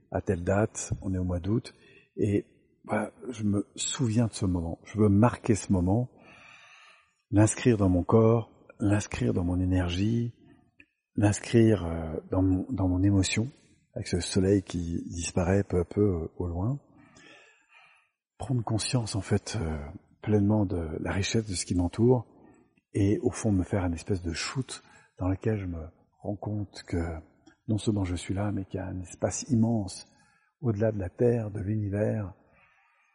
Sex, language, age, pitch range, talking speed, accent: male, French, 50-69, 90-110 Hz, 165 wpm, French